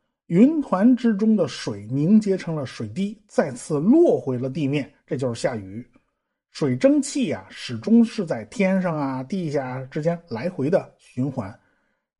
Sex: male